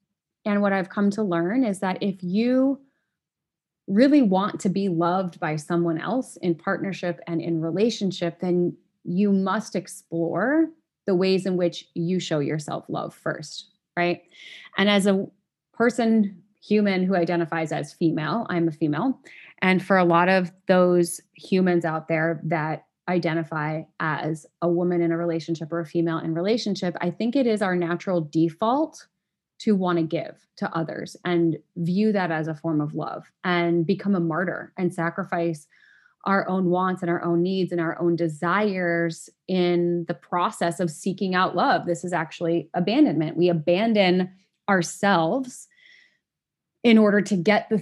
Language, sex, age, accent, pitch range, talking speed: English, female, 20-39, American, 170-200 Hz, 160 wpm